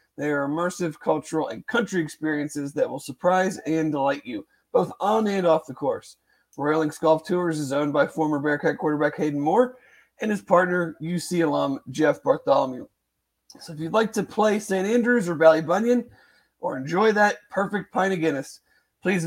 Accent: American